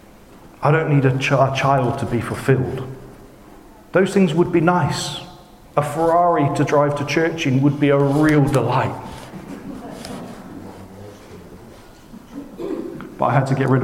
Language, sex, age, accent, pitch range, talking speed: English, male, 40-59, British, 105-145 Hz, 145 wpm